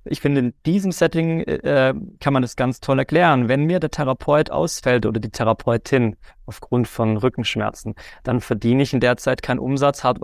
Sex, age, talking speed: male, 30-49, 190 wpm